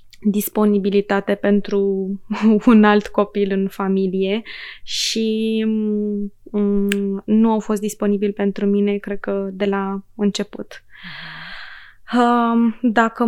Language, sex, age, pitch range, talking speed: Romanian, female, 20-39, 200-225 Hz, 90 wpm